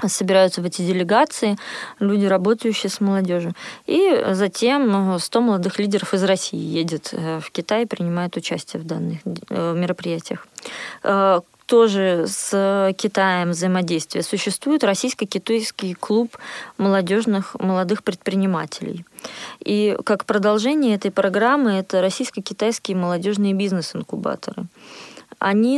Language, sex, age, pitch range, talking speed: Russian, female, 20-39, 180-210 Hz, 100 wpm